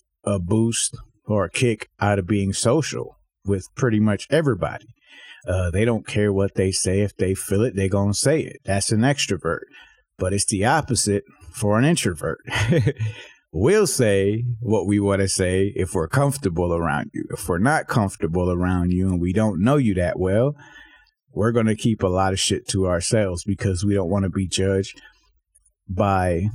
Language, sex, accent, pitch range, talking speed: English, male, American, 95-115 Hz, 185 wpm